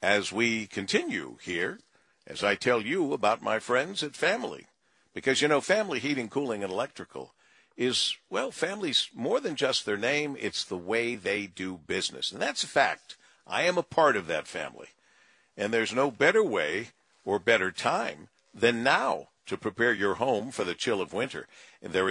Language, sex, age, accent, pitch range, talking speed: English, male, 50-69, American, 110-160 Hz, 180 wpm